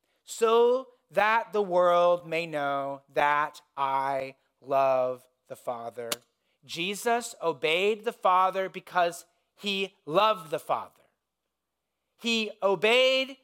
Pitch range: 180-230 Hz